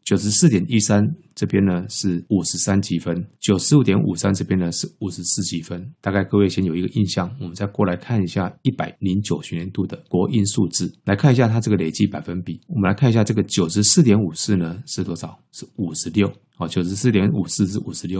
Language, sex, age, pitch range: Chinese, male, 20-39, 90-105 Hz